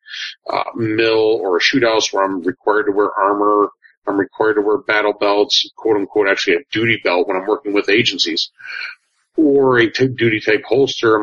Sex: male